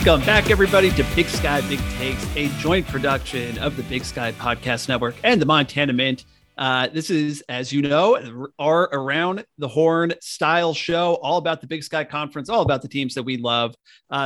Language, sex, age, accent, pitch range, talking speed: English, male, 40-59, American, 130-165 Hz, 200 wpm